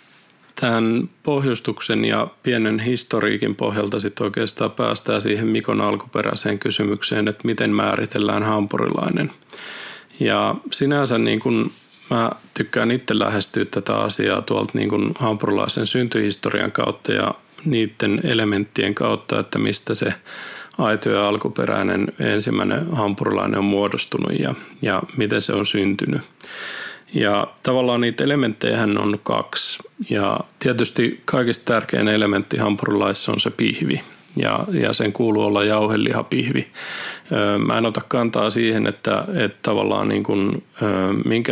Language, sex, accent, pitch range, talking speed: Finnish, male, native, 105-115 Hz, 120 wpm